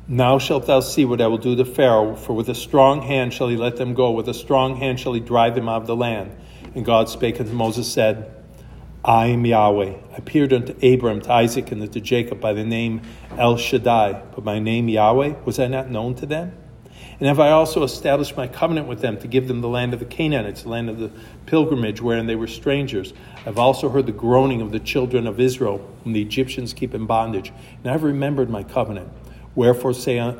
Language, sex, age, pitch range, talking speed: English, male, 50-69, 110-130 Hz, 230 wpm